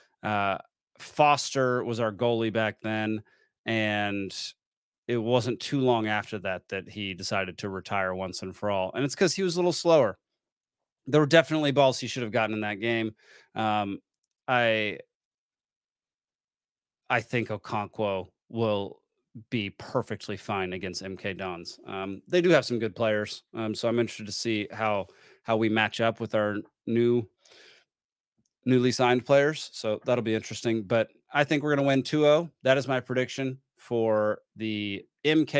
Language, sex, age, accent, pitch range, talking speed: English, male, 30-49, American, 105-130 Hz, 165 wpm